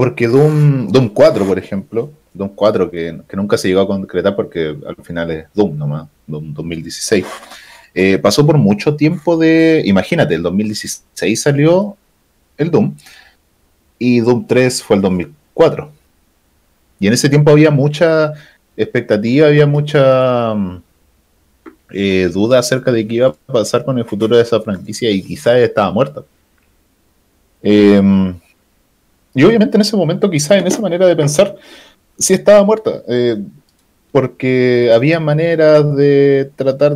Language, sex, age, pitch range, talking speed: Spanish, male, 30-49, 100-150 Hz, 145 wpm